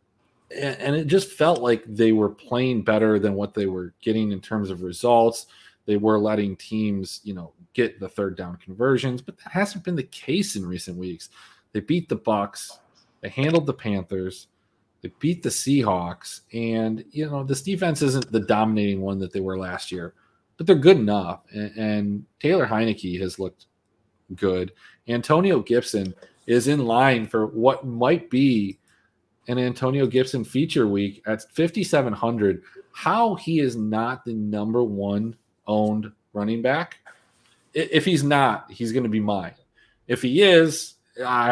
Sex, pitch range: male, 100-130 Hz